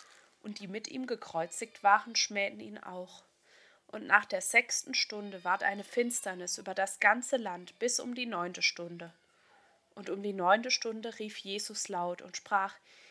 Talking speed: 165 wpm